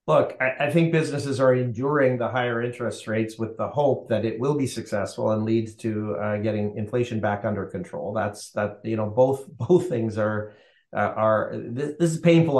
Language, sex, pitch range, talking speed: English, male, 110-125 Hz, 200 wpm